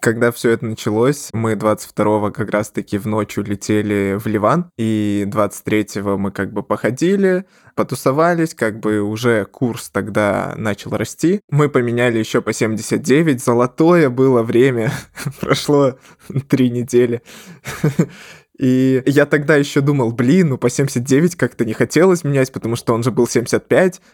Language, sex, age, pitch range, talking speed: Russian, male, 20-39, 110-140 Hz, 140 wpm